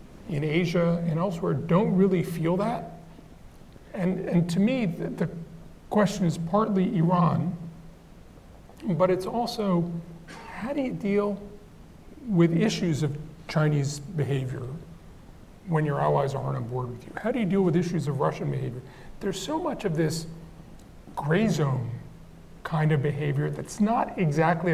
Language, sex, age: English, male, 40-59